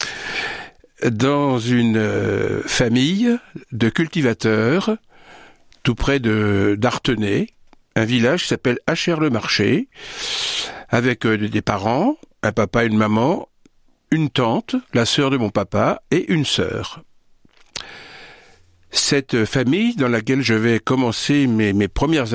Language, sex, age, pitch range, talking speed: French, male, 60-79, 115-165 Hz, 120 wpm